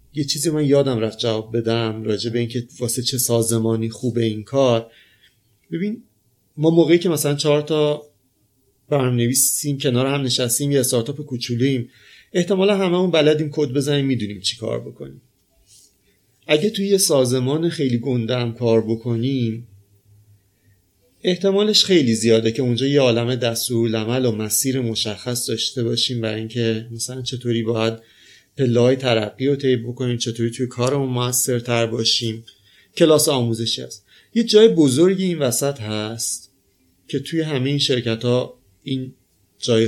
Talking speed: 145 wpm